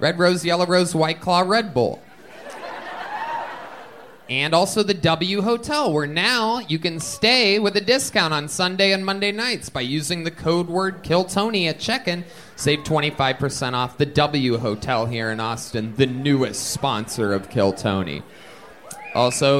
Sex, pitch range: male, 115-180 Hz